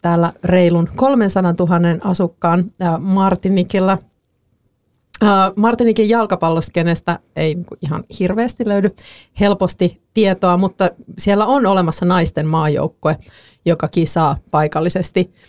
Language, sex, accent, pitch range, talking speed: Finnish, female, native, 160-190 Hz, 90 wpm